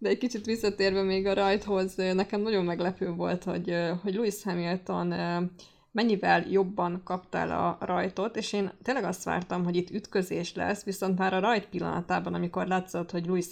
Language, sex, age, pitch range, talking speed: Hungarian, female, 20-39, 180-205 Hz, 170 wpm